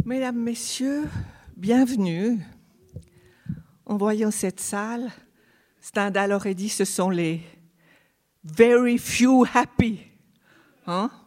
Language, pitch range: French, 180-235 Hz